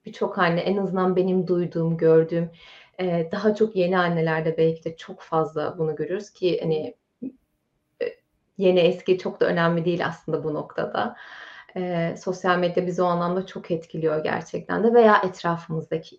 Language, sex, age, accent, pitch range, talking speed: Turkish, female, 30-49, native, 165-220 Hz, 155 wpm